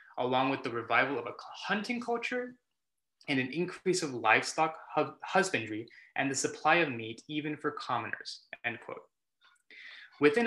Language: English